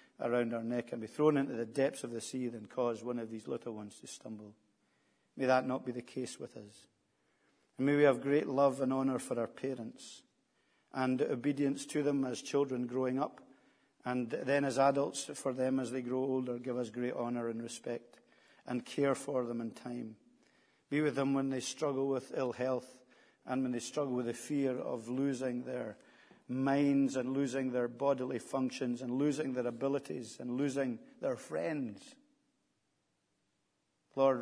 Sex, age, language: male, 50-69, English